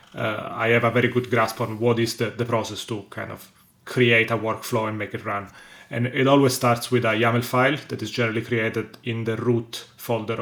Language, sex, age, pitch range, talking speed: English, male, 30-49, 110-125 Hz, 225 wpm